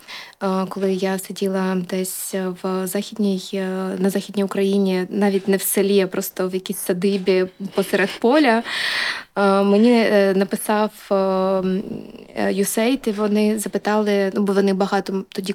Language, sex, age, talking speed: Ukrainian, female, 20-39, 120 wpm